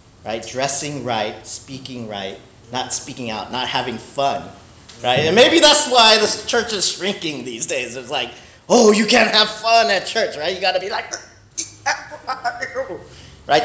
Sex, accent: male, American